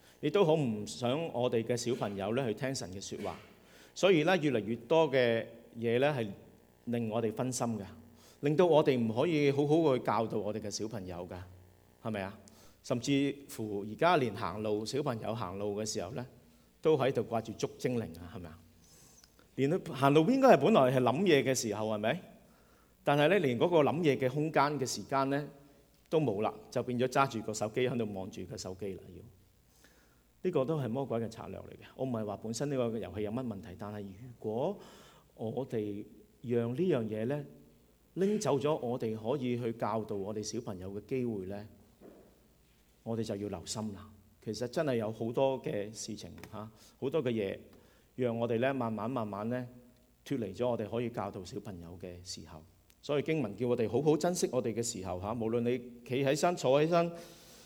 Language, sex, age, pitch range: English, male, 50-69, 105-130 Hz